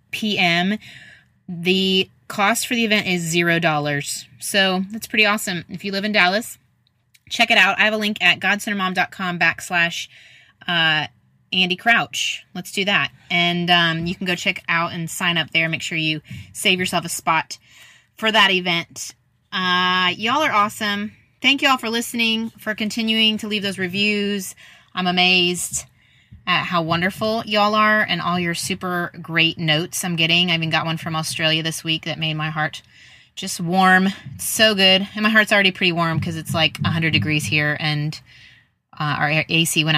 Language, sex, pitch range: English, female, 160-215 Hz